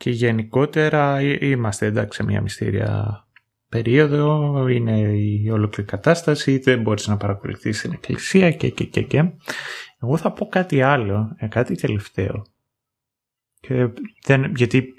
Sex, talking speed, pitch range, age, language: male, 130 wpm, 110-150 Hz, 30-49, Greek